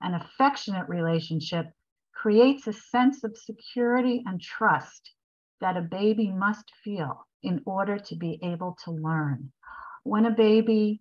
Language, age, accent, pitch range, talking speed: English, 50-69, American, 170-220 Hz, 135 wpm